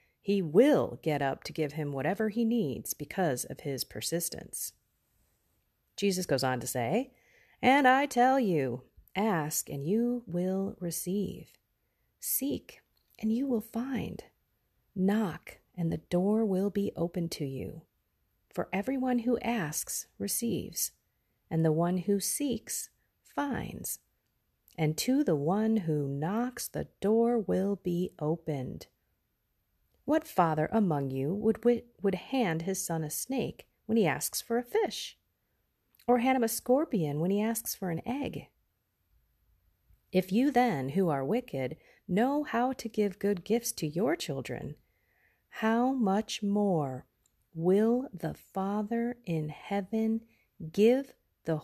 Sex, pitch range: female, 155-230 Hz